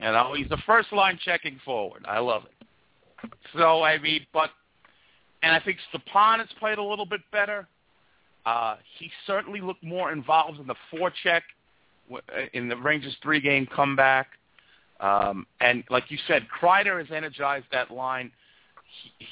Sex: male